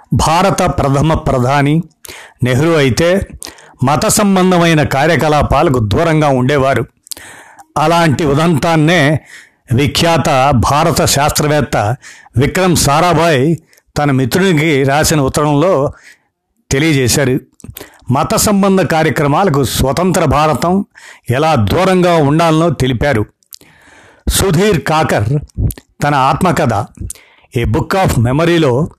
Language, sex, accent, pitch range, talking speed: Telugu, male, native, 135-175 Hz, 55 wpm